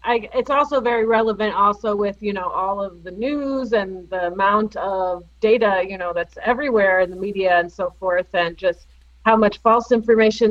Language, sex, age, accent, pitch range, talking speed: English, female, 30-49, American, 185-230 Hz, 195 wpm